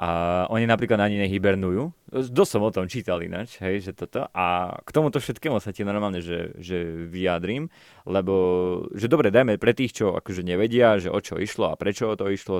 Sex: male